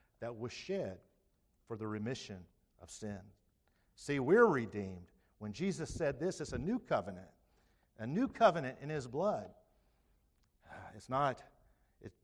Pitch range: 105-150 Hz